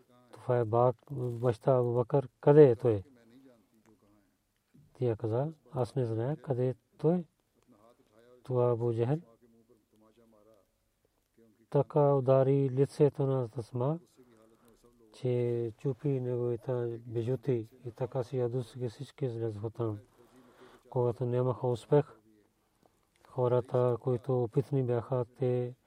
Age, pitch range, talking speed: 40-59, 120-135 Hz, 30 wpm